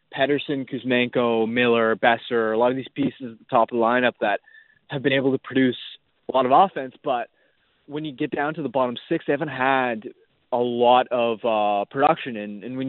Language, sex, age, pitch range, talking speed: English, male, 20-39, 120-145 Hz, 210 wpm